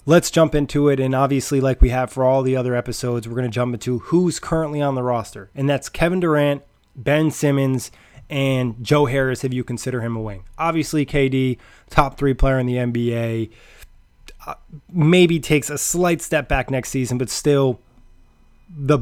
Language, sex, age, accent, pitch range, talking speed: English, male, 20-39, American, 125-145 Hz, 185 wpm